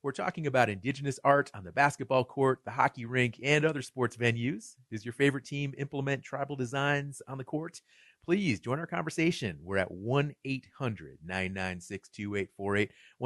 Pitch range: 105-135 Hz